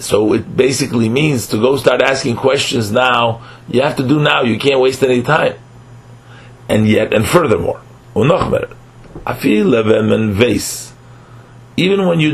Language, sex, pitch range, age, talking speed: English, male, 115-125 Hz, 40-59, 130 wpm